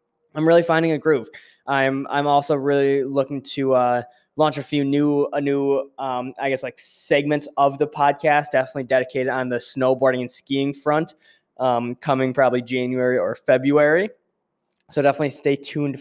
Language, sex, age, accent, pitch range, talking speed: English, male, 20-39, American, 125-145 Hz, 165 wpm